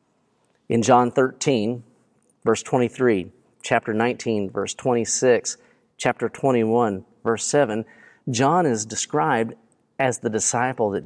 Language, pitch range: English, 115-145 Hz